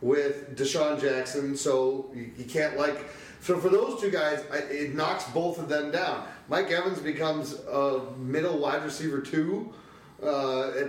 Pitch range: 150-195 Hz